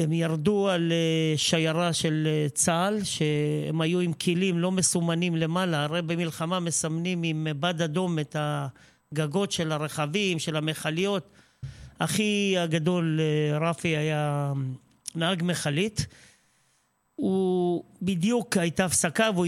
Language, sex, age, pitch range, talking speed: Hebrew, male, 40-59, 155-180 Hz, 110 wpm